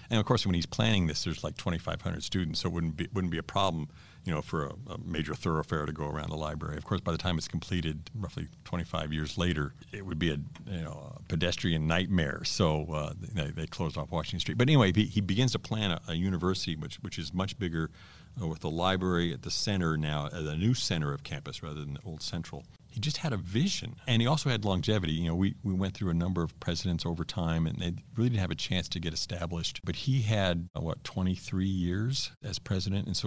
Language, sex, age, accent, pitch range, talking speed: English, male, 50-69, American, 85-105 Hz, 245 wpm